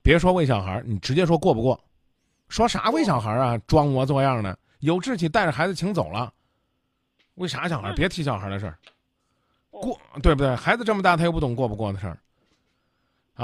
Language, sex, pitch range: Chinese, male, 130-185 Hz